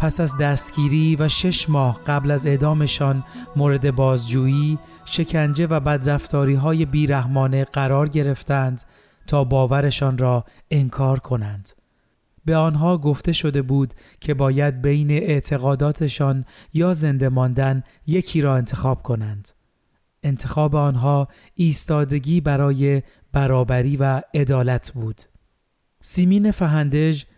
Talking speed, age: 105 wpm, 30-49